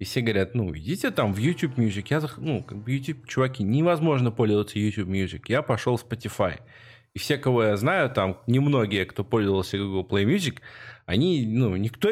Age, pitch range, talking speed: 20-39, 105-140 Hz, 185 wpm